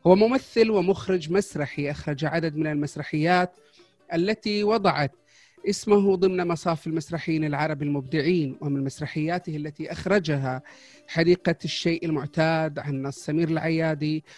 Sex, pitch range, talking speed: male, 150-175 Hz, 115 wpm